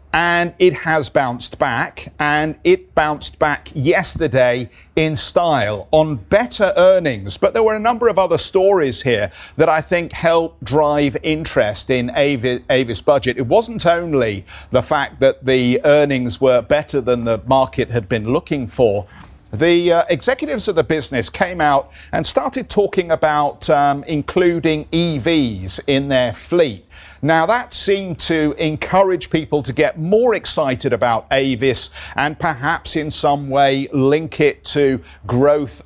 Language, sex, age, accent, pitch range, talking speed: English, male, 50-69, British, 130-165 Hz, 150 wpm